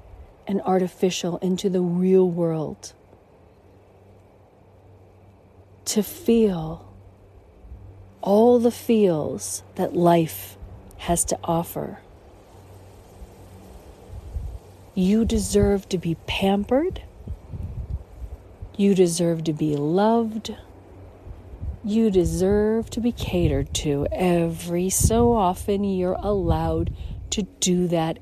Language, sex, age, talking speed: English, female, 40-59, 85 wpm